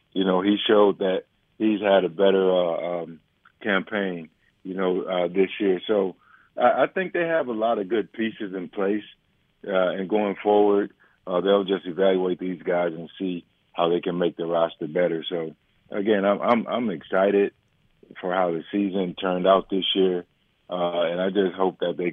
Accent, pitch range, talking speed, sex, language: American, 90-110 Hz, 190 wpm, male, English